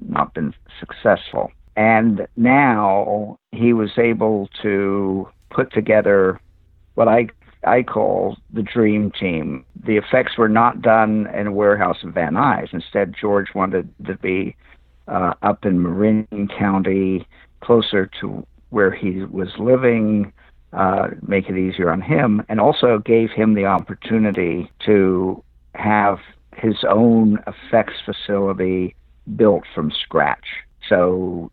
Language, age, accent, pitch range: English, 50-69, American, 90-110 Hz